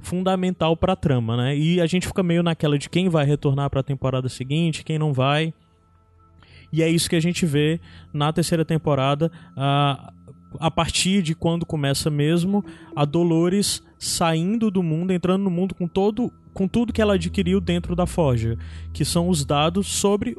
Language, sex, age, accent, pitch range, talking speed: Portuguese, male, 20-39, Brazilian, 145-185 Hz, 180 wpm